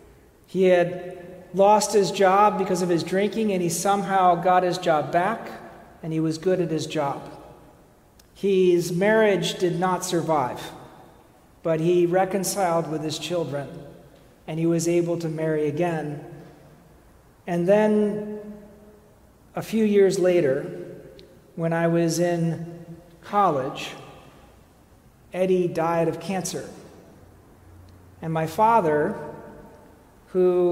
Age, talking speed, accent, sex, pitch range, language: 40-59, 115 wpm, American, male, 155-185 Hz, English